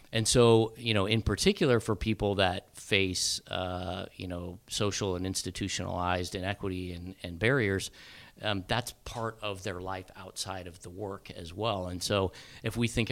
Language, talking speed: English, 170 wpm